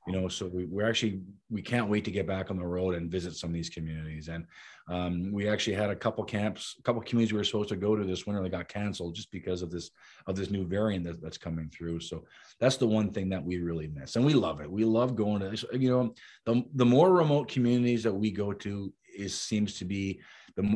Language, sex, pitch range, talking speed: English, male, 90-120 Hz, 255 wpm